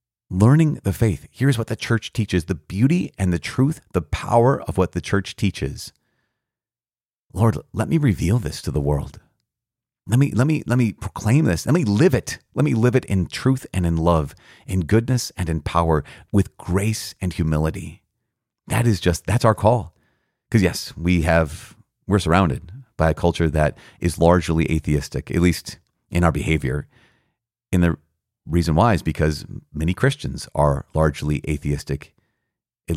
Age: 30-49